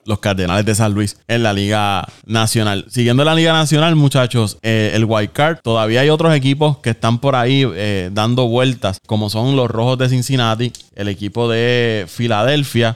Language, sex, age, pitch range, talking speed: Spanish, male, 20-39, 105-130 Hz, 180 wpm